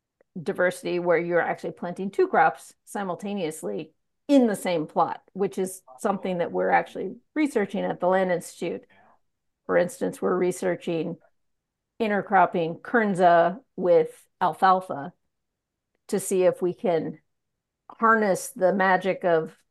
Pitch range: 180-220 Hz